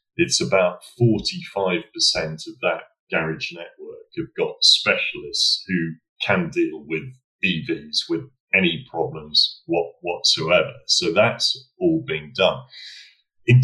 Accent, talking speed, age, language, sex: British, 115 wpm, 40-59, English, male